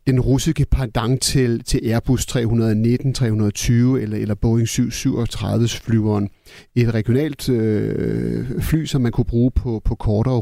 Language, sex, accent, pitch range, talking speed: Danish, male, native, 115-135 Hz, 125 wpm